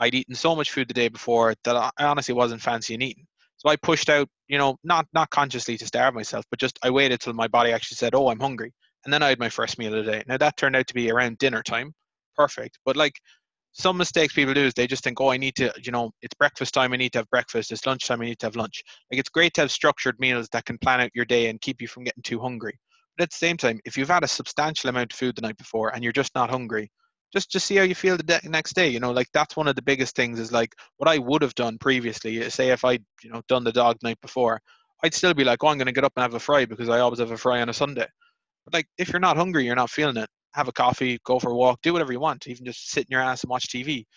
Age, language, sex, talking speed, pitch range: 20-39, English, male, 305 wpm, 120-145 Hz